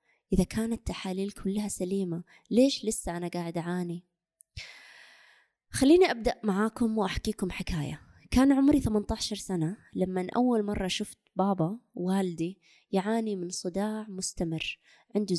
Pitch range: 180-260 Hz